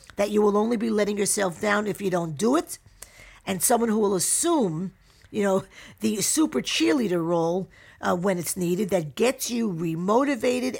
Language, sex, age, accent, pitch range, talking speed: English, female, 50-69, American, 170-215 Hz, 180 wpm